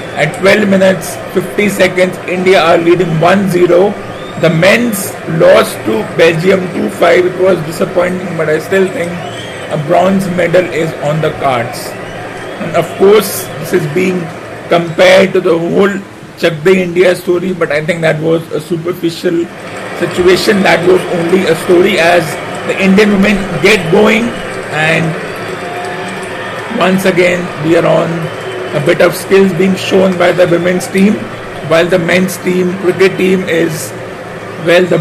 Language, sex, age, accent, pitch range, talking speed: English, male, 50-69, Indian, 170-190 Hz, 145 wpm